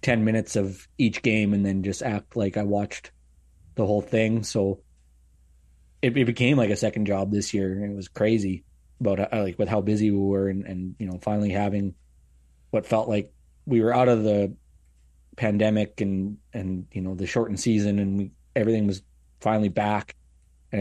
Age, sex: 20-39, male